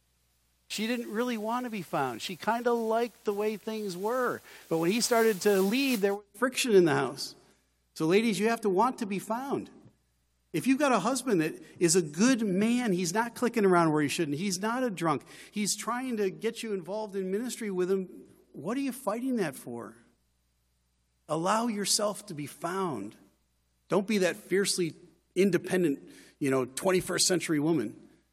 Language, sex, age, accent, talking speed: English, male, 40-59, American, 185 wpm